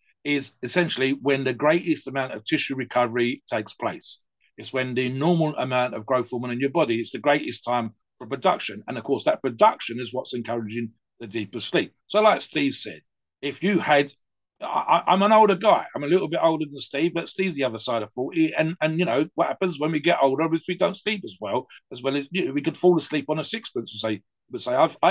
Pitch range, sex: 125-180 Hz, male